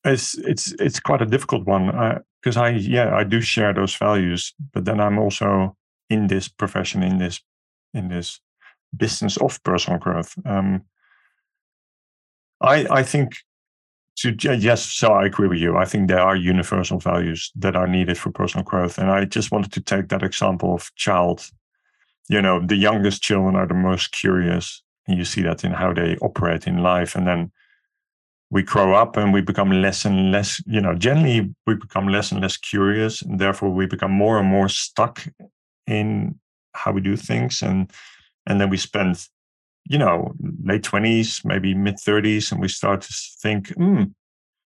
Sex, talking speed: male, 180 wpm